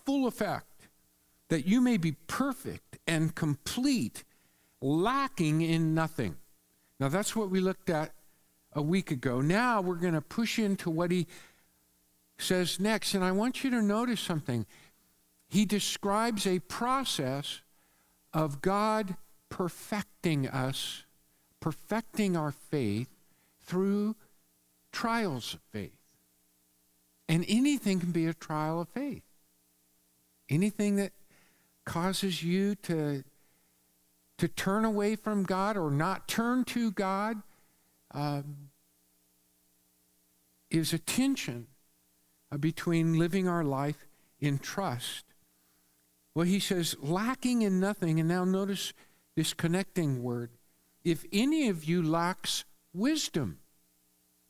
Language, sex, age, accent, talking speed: English, male, 50-69, American, 115 wpm